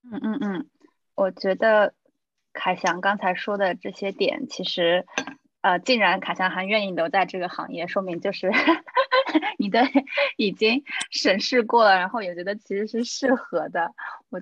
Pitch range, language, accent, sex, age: 180-255 Hz, Chinese, native, female, 20-39